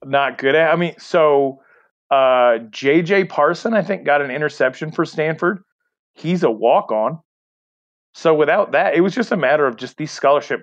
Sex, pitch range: male, 120-165 Hz